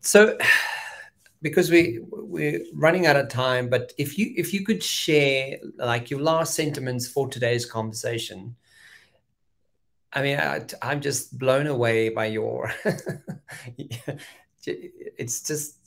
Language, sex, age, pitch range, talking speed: English, male, 30-49, 115-145 Hz, 125 wpm